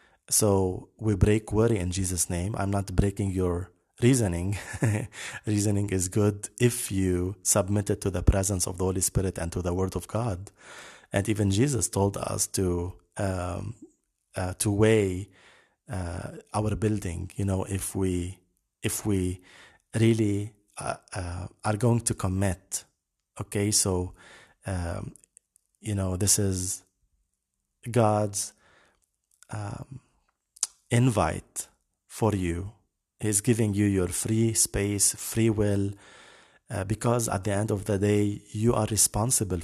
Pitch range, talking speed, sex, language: 95-105 Hz, 135 wpm, male, English